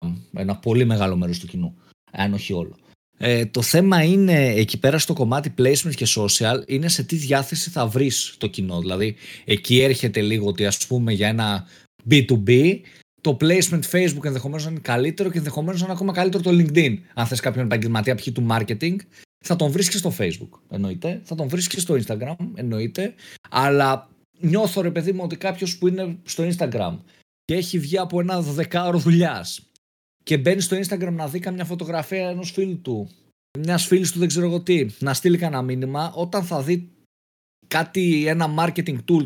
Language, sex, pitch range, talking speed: Greek, male, 115-175 Hz, 175 wpm